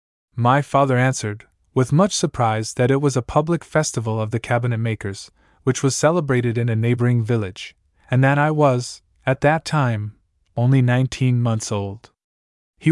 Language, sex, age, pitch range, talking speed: English, male, 20-39, 105-135 Hz, 165 wpm